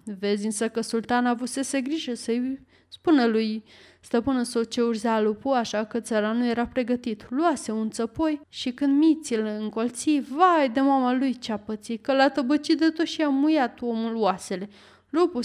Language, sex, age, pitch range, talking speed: Romanian, female, 20-39, 215-275 Hz, 170 wpm